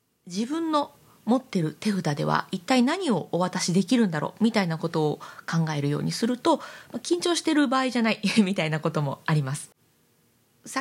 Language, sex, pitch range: Japanese, female, 165-265 Hz